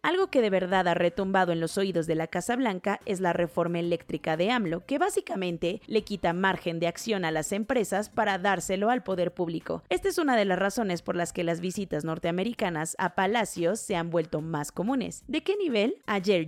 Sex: female